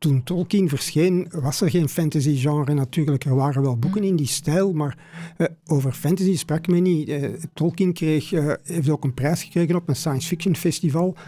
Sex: male